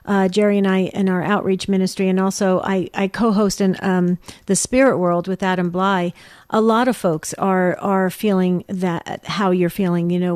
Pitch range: 180-205 Hz